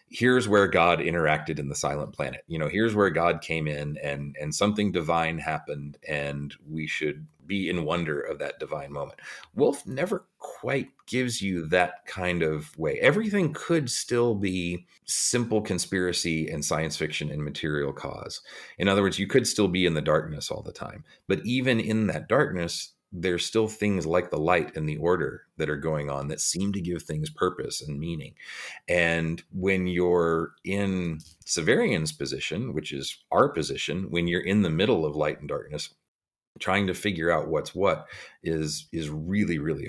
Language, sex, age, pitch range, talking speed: English, male, 40-59, 80-100 Hz, 180 wpm